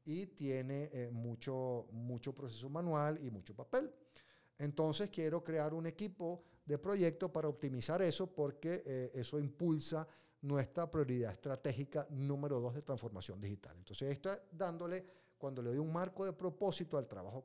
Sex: male